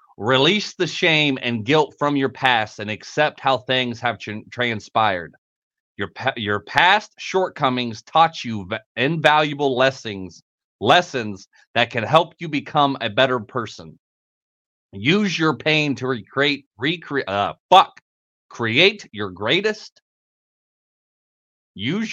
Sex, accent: male, American